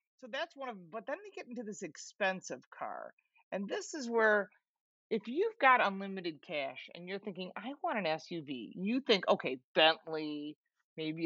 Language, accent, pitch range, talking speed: English, American, 165-235 Hz, 180 wpm